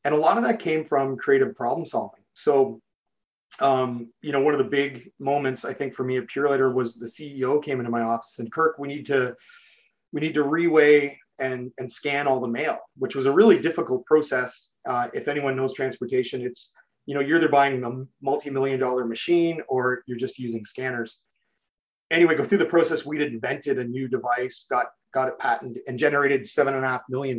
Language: English